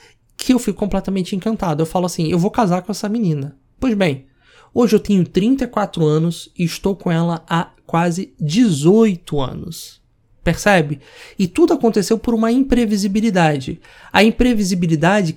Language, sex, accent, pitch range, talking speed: Portuguese, male, Brazilian, 165-230 Hz, 150 wpm